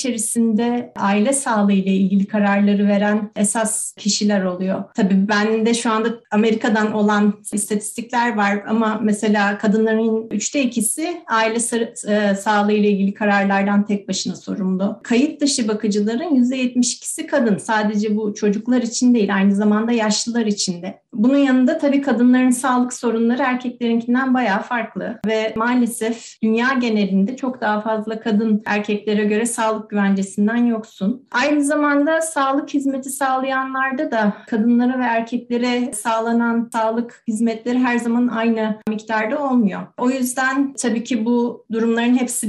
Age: 40-59